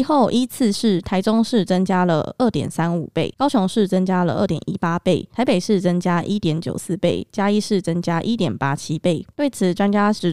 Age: 20-39